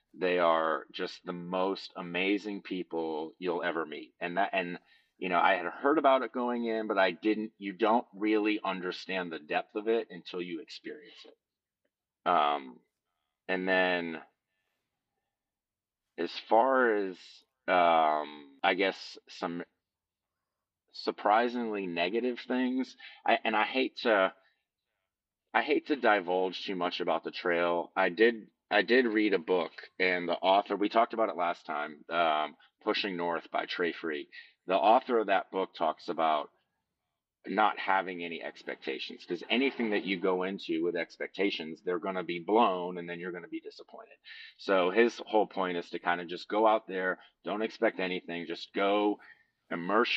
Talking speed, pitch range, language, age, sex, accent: 160 wpm, 85-110 Hz, English, 30-49, male, American